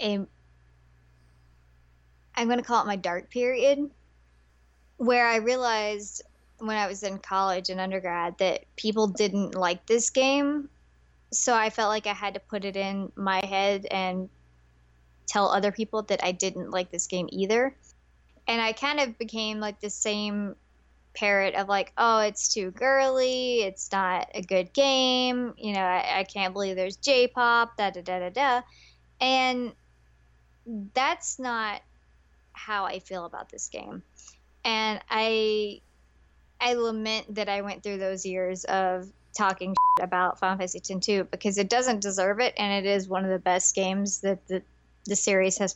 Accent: American